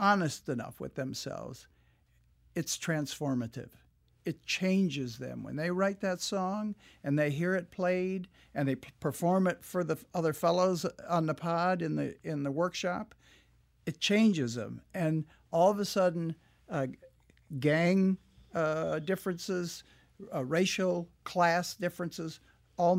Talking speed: 140 wpm